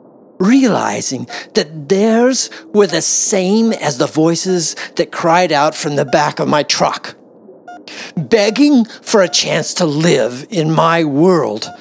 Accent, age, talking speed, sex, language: American, 50-69, 135 wpm, male, English